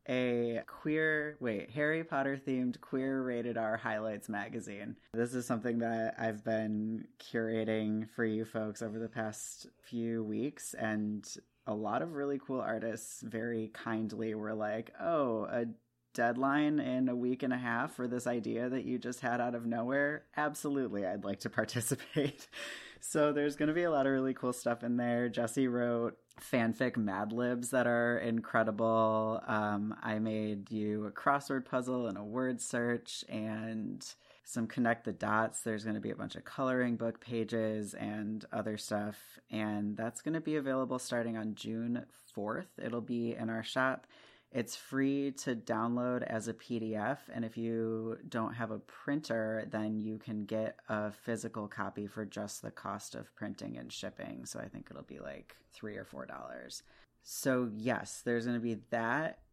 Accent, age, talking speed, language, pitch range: American, 30-49, 170 wpm, English, 110-125 Hz